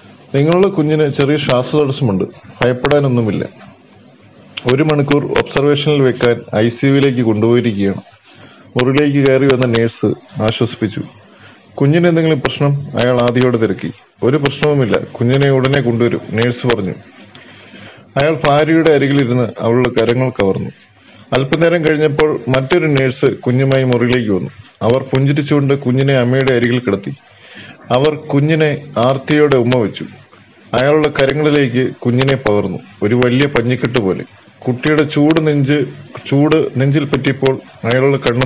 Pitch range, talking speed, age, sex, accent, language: 120-145 Hz, 105 wpm, 30-49, male, native, Malayalam